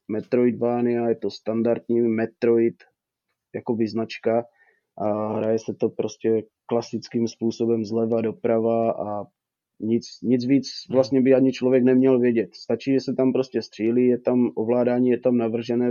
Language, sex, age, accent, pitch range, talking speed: Czech, male, 20-39, native, 115-125 Hz, 145 wpm